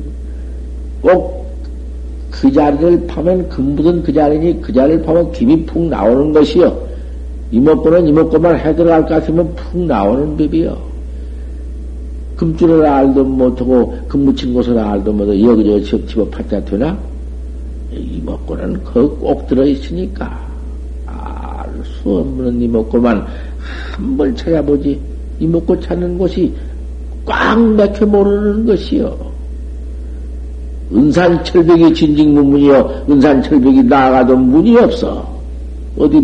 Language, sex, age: Korean, male, 60-79